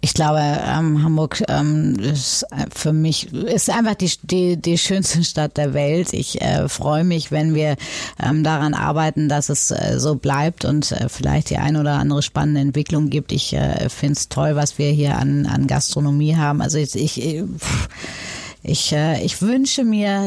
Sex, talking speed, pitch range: female, 180 wpm, 140-160 Hz